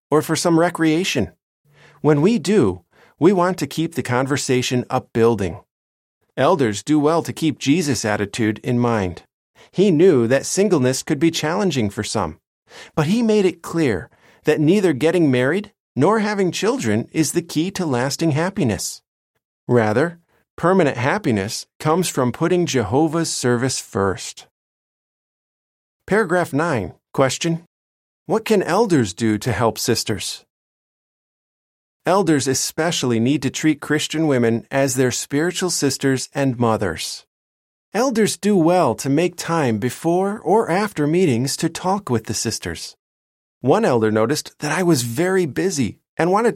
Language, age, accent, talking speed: English, 40-59, American, 140 wpm